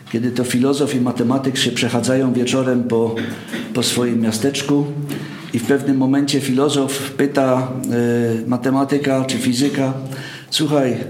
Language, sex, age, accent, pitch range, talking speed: Polish, male, 50-69, native, 125-155 Hz, 120 wpm